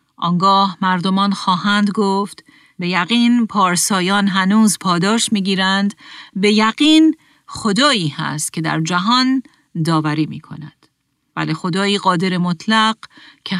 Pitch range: 170-210 Hz